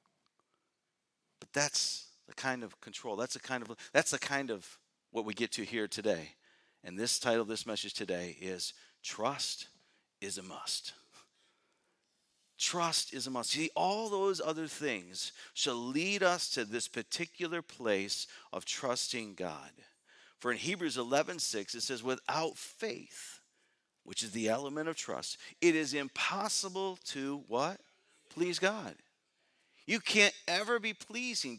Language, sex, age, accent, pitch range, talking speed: English, male, 50-69, American, 120-205 Hz, 150 wpm